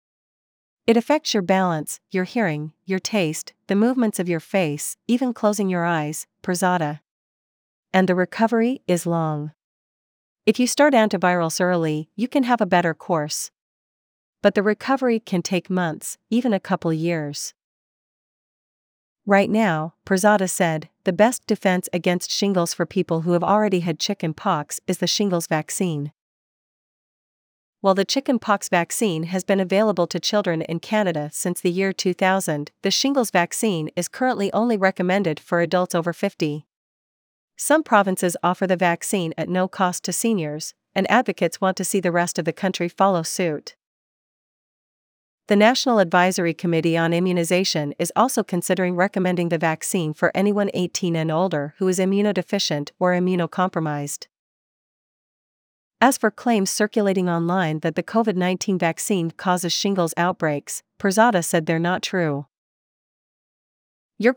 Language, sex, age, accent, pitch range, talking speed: English, female, 40-59, American, 170-205 Hz, 145 wpm